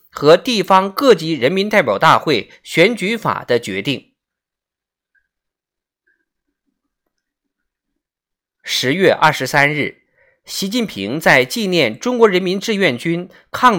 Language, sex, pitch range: Chinese, male, 170-250 Hz